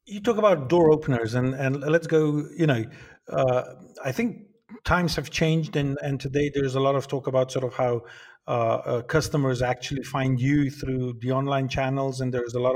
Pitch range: 130-155 Hz